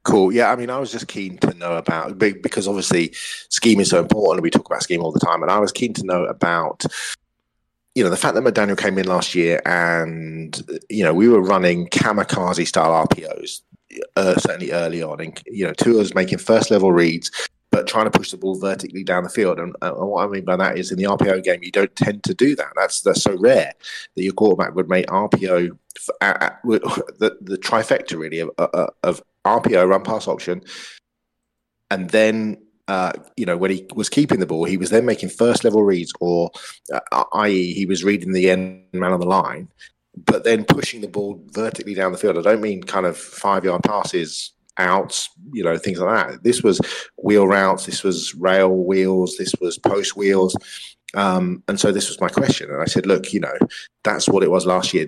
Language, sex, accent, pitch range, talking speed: English, male, British, 85-100 Hz, 215 wpm